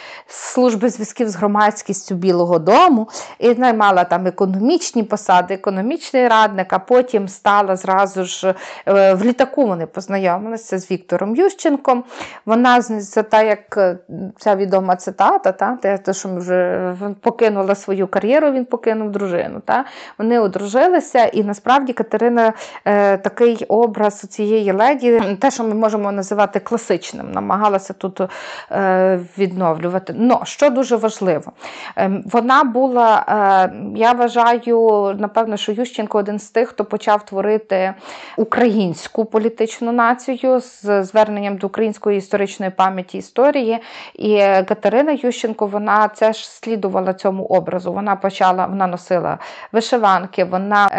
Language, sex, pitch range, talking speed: Ukrainian, female, 190-230 Hz, 120 wpm